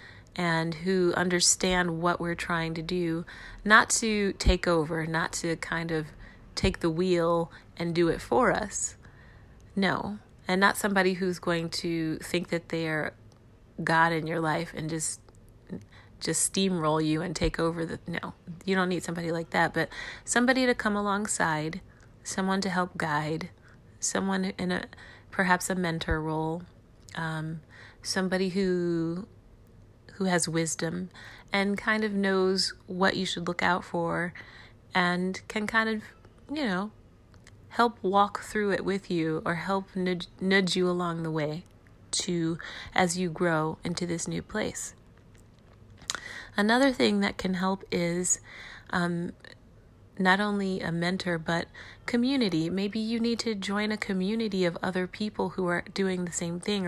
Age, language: 30-49, English